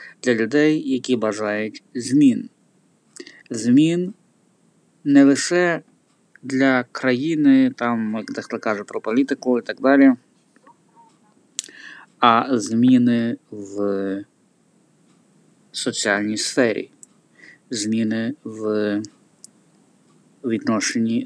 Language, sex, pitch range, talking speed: Ukrainian, male, 110-160 Hz, 75 wpm